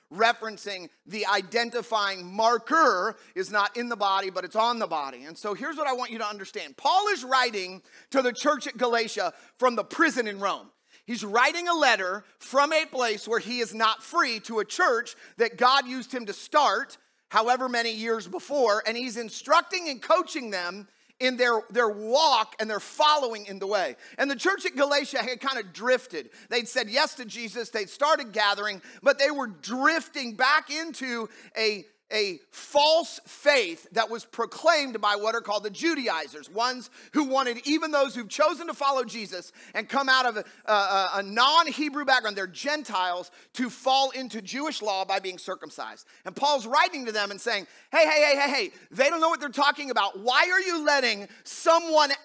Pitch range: 215-290 Hz